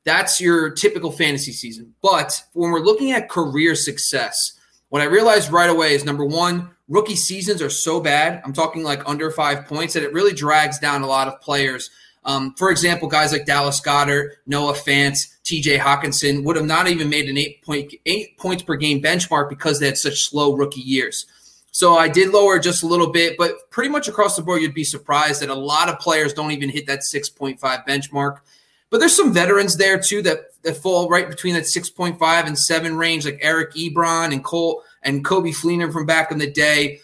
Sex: male